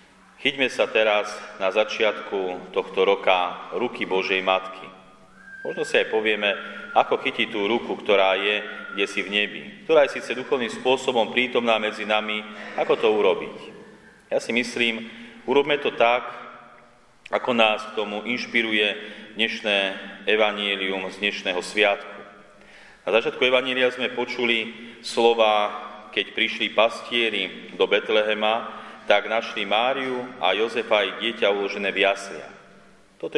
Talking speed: 130 wpm